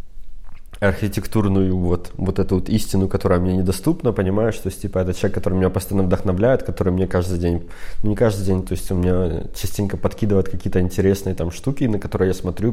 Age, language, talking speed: 20-39, Ukrainian, 195 wpm